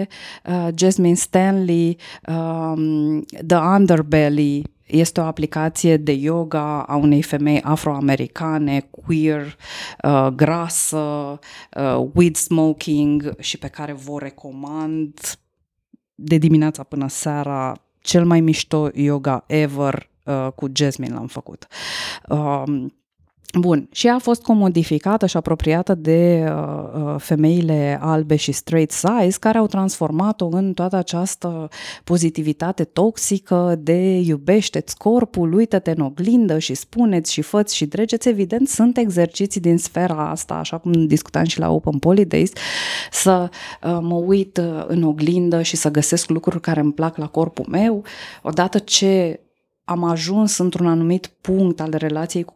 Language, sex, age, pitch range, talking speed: Romanian, female, 20-39, 150-180 Hz, 130 wpm